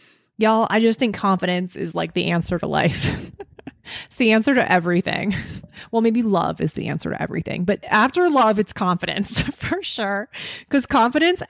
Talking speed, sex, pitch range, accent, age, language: 170 wpm, female, 180-225 Hz, American, 20-39, English